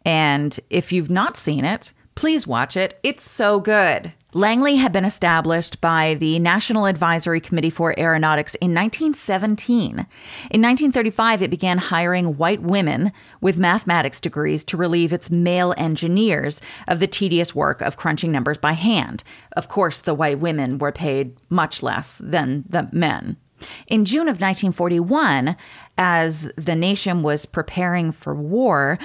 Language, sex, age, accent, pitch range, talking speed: English, female, 30-49, American, 155-200 Hz, 150 wpm